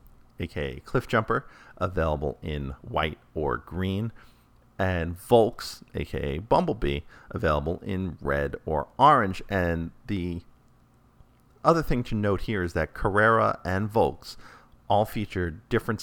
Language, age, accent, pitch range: English, 40-59, American, 85-110 Hz